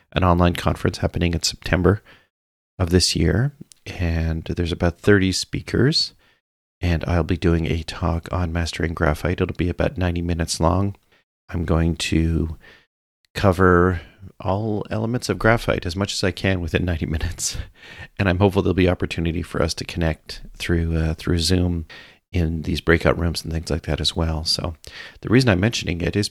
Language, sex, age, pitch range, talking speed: English, male, 40-59, 80-95 Hz, 175 wpm